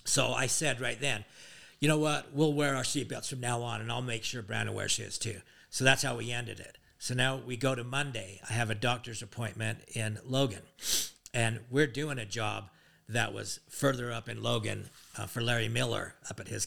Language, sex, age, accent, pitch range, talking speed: English, male, 50-69, American, 110-130 Hz, 215 wpm